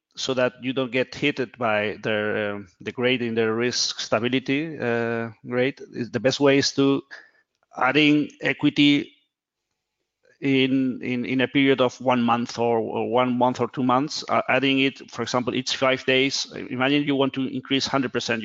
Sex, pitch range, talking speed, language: male, 120-135 Hz, 170 wpm, English